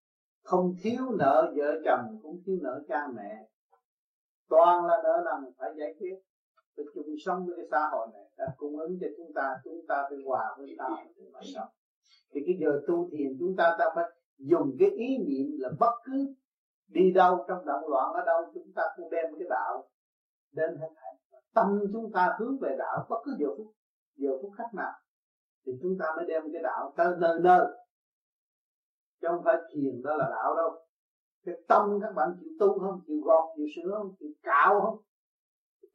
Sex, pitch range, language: male, 150-210 Hz, Vietnamese